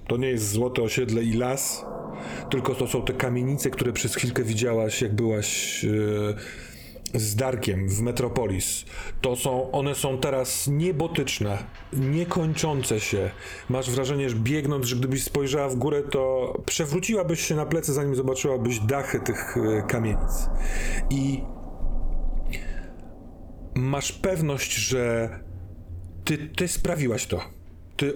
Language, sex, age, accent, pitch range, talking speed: Polish, male, 40-59, native, 110-140 Hz, 130 wpm